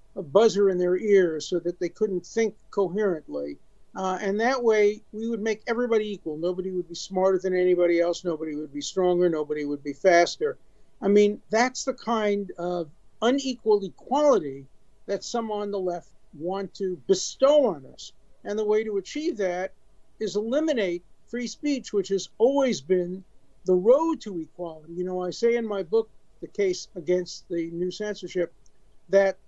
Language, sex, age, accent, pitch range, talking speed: English, male, 50-69, American, 175-210 Hz, 175 wpm